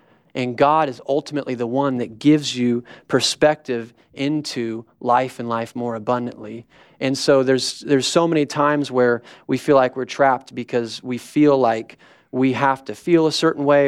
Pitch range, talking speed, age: 120-145 Hz, 175 wpm, 30-49